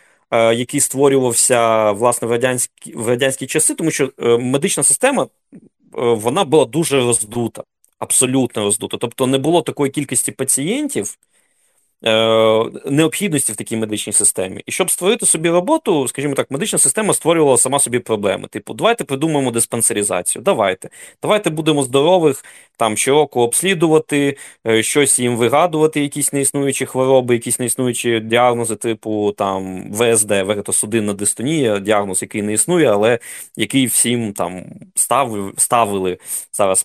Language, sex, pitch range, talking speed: Ukrainian, male, 110-150 Hz, 125 wpm